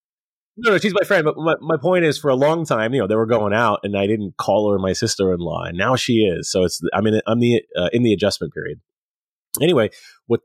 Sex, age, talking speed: male, 30-49, 255 wpm